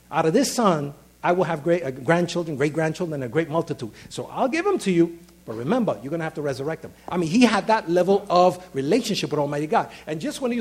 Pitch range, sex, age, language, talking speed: 155-225 Hz, male, 50-69, English, 250 wpm